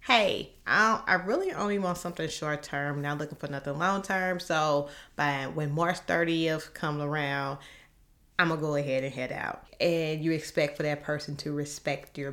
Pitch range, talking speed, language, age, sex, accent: 145-180 Hz, 190 wpm, English, 30-49, female, American